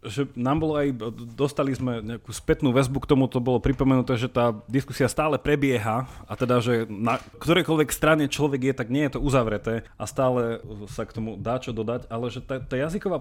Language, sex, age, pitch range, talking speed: Slovak, male, 30-49, 110-140 Hz, 205 wpm